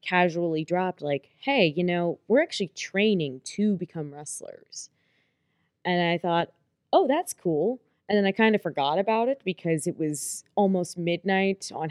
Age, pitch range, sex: 20-39, 160-210 Hz, female